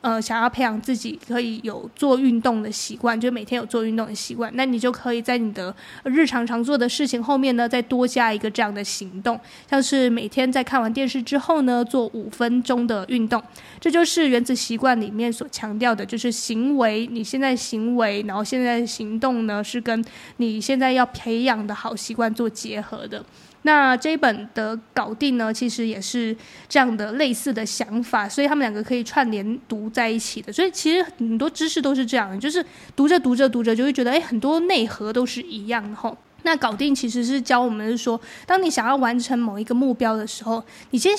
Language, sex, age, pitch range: Chinese, female, 20-39, 225-265 Hz